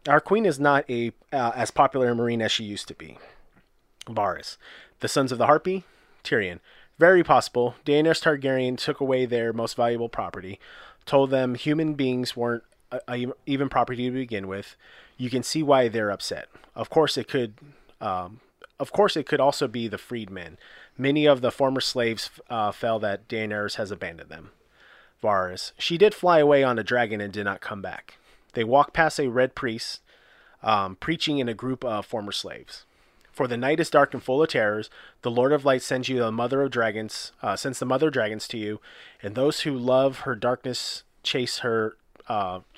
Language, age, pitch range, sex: English, 30-49, 115-140 Hz, male